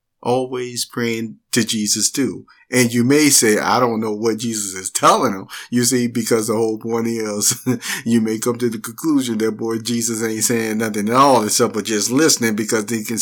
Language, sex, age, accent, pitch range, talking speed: English, male, 50-69, American, 110-140 Hz, 200 wpm